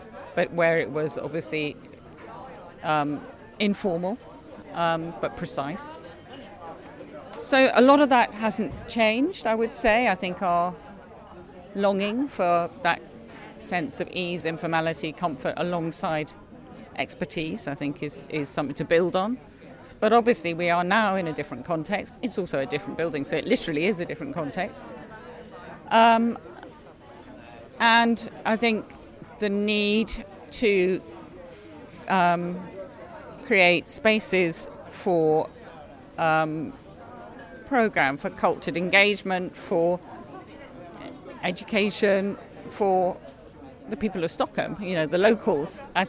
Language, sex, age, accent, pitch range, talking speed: English, female, 40-59, British, 165-215 Hz, 115 wpm